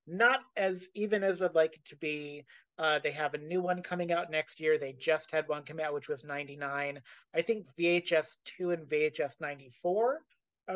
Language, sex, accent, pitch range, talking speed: English, male, American, 150-180 Hz, 195 wpm